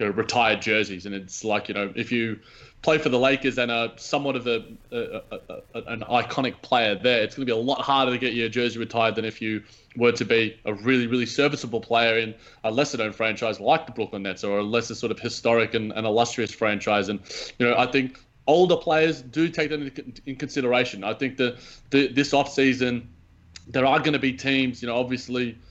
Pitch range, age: 115-135 Hz, 20-39